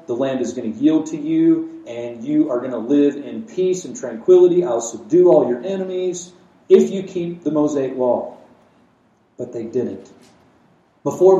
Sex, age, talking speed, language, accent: male, 40-59, 175 wpm, English, American